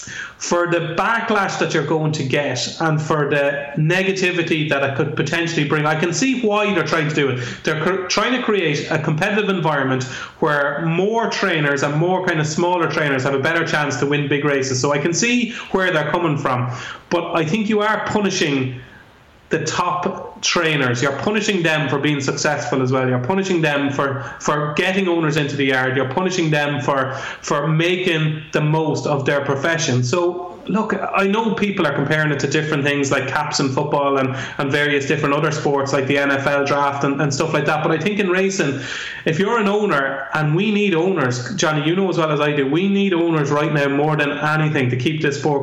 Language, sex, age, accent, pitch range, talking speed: English, male, 30-49, Irish, 140-175 Hz, 210 wpm